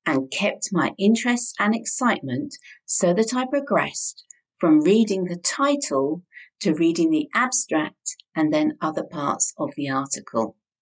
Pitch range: 155-255 Hz